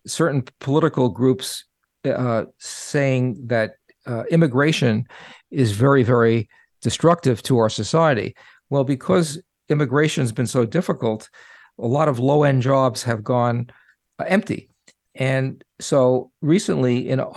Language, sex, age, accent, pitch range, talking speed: English, male, 50-69, American, 125-155 Hz, 115 wpm